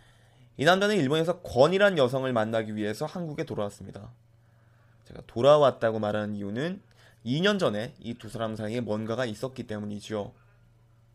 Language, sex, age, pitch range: Korean, male, 20-39, 115-145 Hz